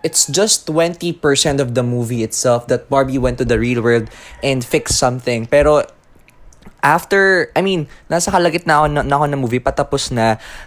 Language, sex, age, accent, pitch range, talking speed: Filipino, male, 20-39, native, 115-150 Hz, 180 wpm